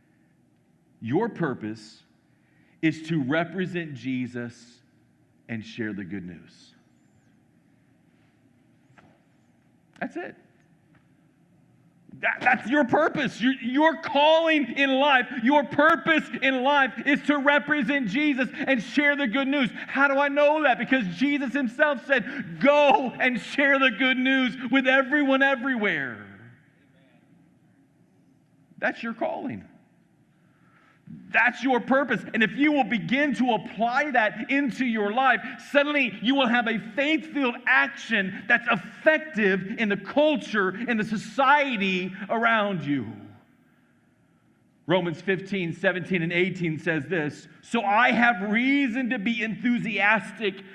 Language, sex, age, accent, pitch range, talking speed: English, male, 50-69, American, 180-275 Hz, 120 wpm